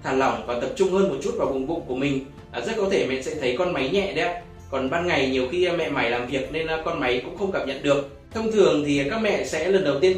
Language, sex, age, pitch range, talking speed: Vietnamese, male, 20-39, 135-180 Hz, 295 wpm